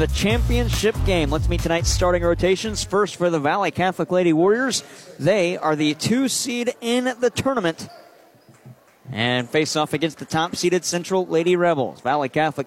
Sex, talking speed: male, 165 wpm